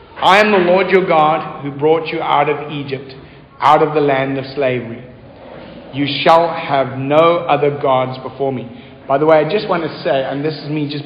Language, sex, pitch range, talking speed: English, male, 145-180 Hz, 210 wpm